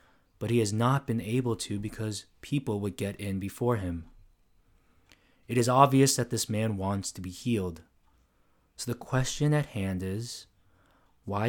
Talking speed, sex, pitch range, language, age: 160 wpm, male, 95-125 Hz, English, 20-39